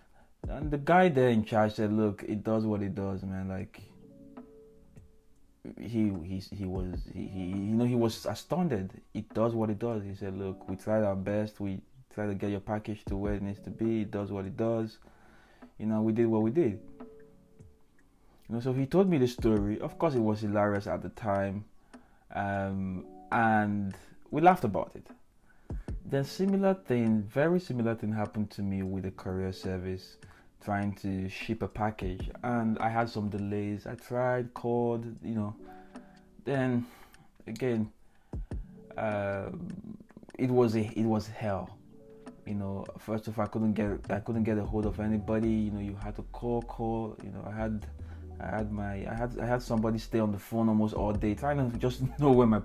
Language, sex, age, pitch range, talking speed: English, male, 20-39, 100-115 Hz, 190 wpm